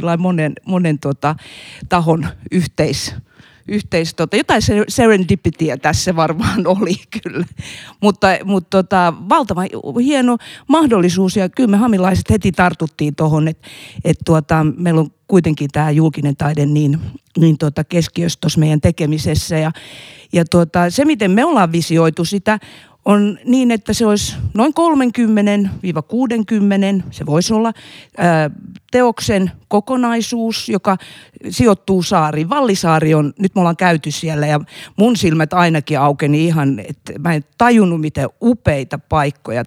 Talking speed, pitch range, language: 130 wpm, 155-200 Hz, Finnish